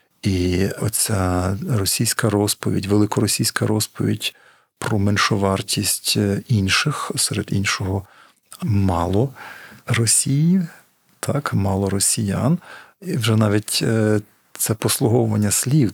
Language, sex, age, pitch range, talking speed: Ukrainian, male, 50-69, 100-120 Hz, 85 wpm